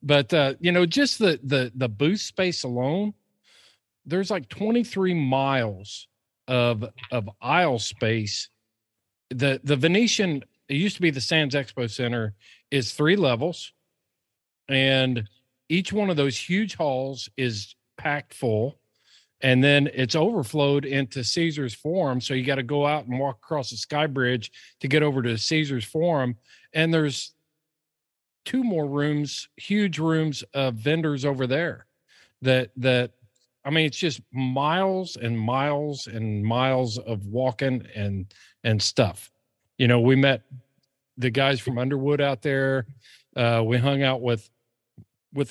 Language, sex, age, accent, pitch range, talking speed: English, male, 40-59, American, 120-155 Hz, 145 wpm